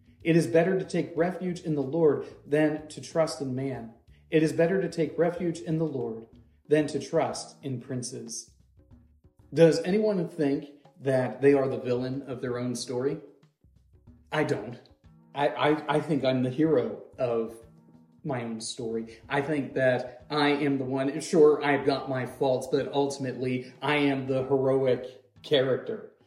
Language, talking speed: English, 165 wpm